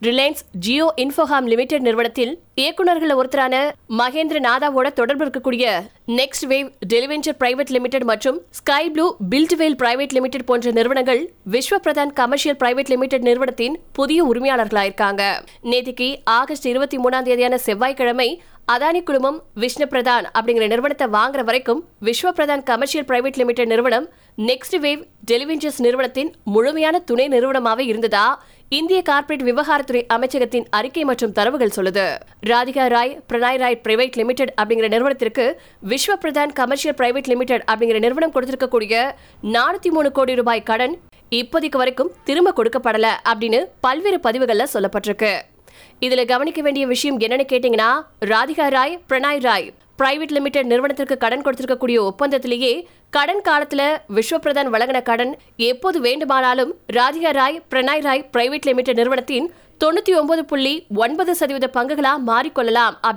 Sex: female